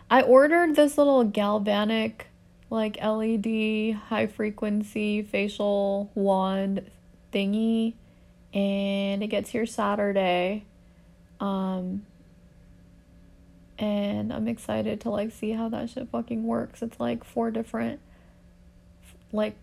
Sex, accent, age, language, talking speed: female, American, 20-39, English, 100 wpm